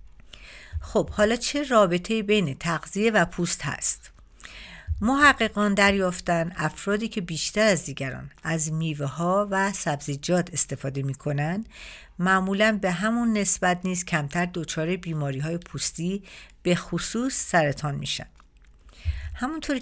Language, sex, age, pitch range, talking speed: Persian, female, 50-69, 150-200 Hz, 120 wpm